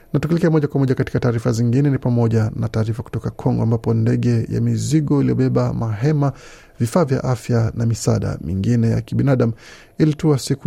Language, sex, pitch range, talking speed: Swahili, male, 115-135 Hz, 165 wpm